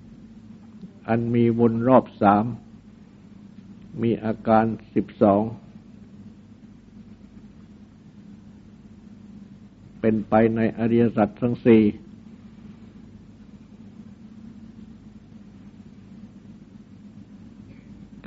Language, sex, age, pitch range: Thai, male, 60-79, 110-125 Hz